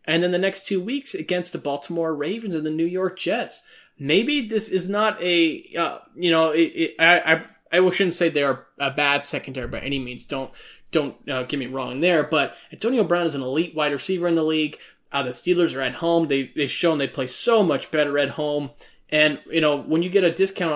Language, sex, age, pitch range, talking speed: English, male, 20-39, 140-180 Hz, 230 wpm